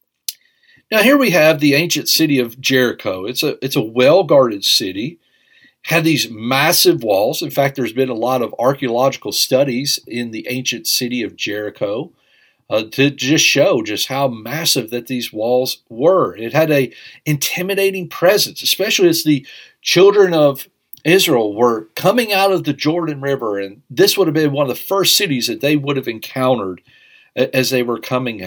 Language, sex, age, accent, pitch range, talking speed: English, male, 50-69, American, 125-165 Hz, 175 wpm